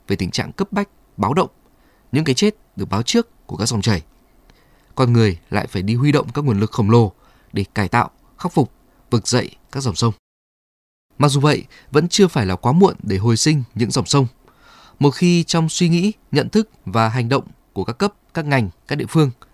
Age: 20-39